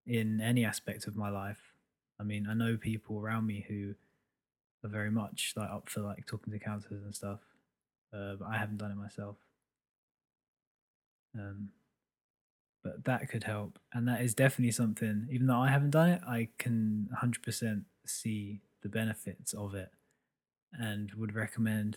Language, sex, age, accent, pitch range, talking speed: English, male, 20-39, British, 105-115 Hz, 165 wpm